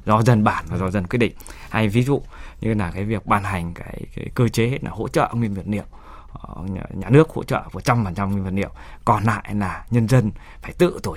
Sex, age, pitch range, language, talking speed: male, 20-39, 95-115 Hz, Vietnamese, 235 wpm